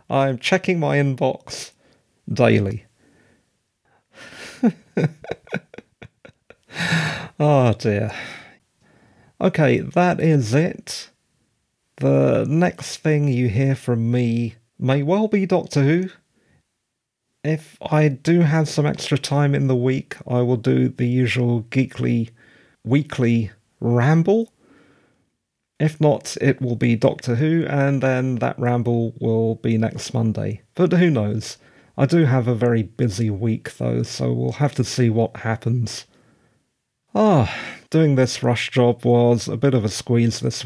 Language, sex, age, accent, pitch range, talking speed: English, male, 40-59, British, 115-150 Hz, 125 wpm